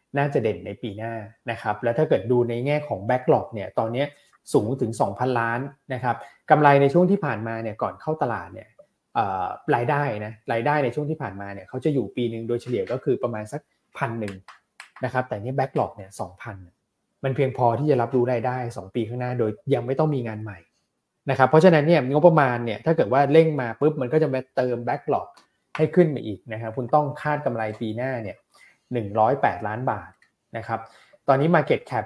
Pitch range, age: 110-140 Hz, 20-39